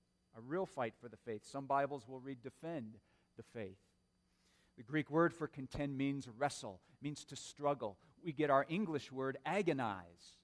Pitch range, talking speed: 130-180 Hz, 165 wpm